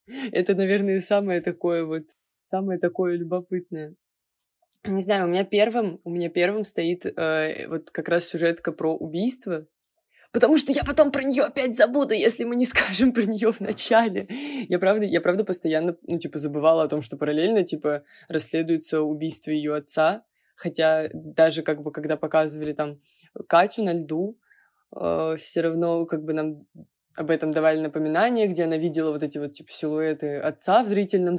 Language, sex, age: Russian, female, 20-39